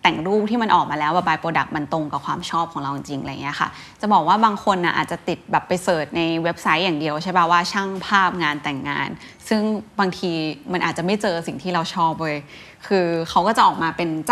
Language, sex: Thai, female